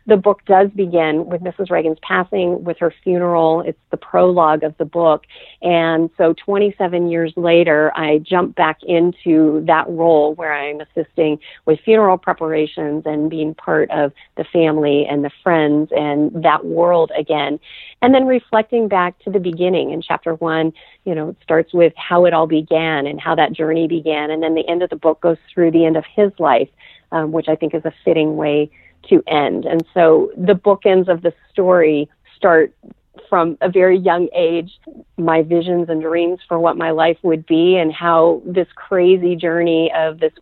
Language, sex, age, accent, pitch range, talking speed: English, female, 40-59, American, 160-185 Hz, 185 wpm